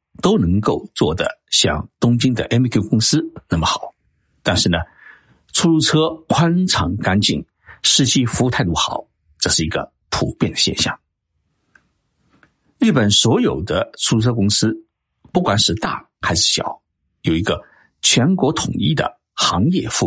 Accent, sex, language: native, male, Chinese